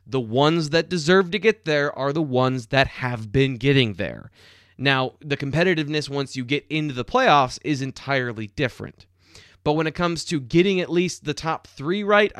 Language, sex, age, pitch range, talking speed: English, male, 20-39, 125-175 Hz, 190 wpm